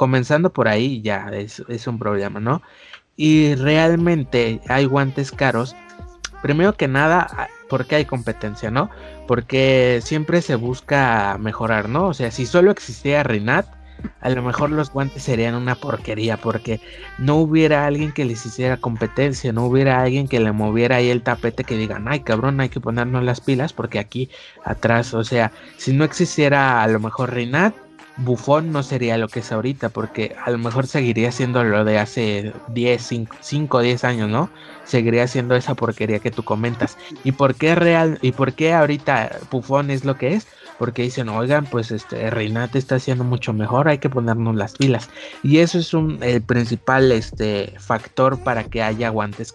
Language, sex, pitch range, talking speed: Spanish, male, 115-140 Hz, 180 wpm